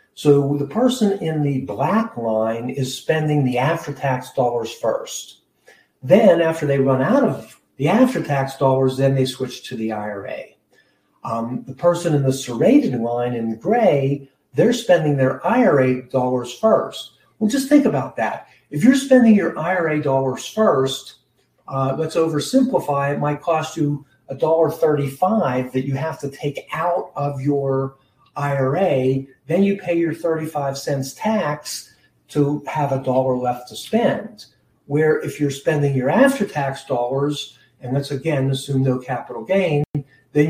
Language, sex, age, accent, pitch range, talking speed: English, male, 50-69, American, 130-170 Hz, 150 wpm